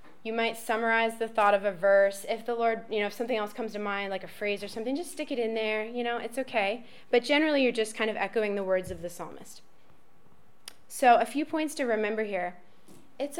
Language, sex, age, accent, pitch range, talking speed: English, female, 20-39, American, 200-245 Hz, 235 wpm